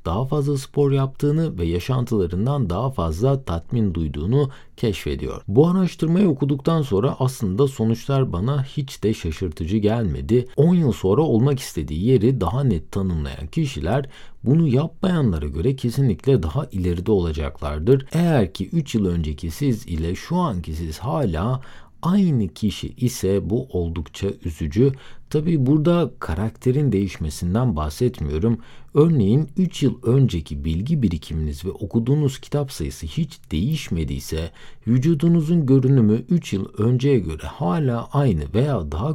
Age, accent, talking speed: 50-69, native, 125 wpm